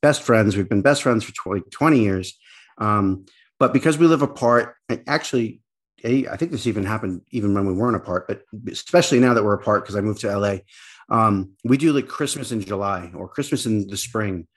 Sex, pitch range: male, 105-130 Hz